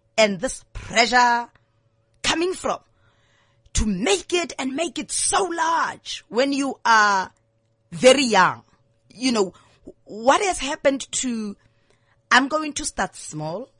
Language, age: English, 30-49